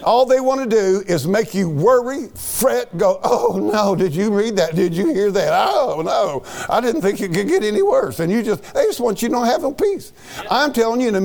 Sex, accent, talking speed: male, American, 255 wpm